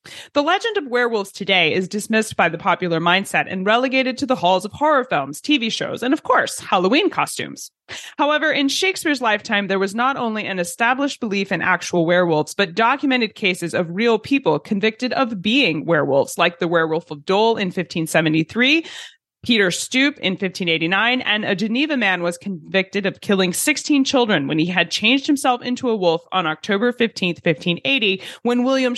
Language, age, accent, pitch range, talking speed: English, 30-49, American, 175-255 Hz, 175 wpm